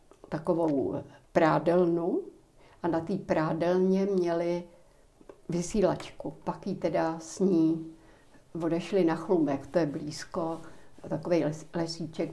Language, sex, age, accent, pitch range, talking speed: Czech, female, 60-79, native, 160-190 Hz, 95 wpm